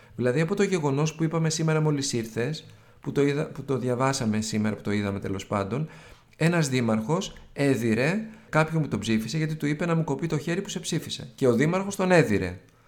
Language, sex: Greek, male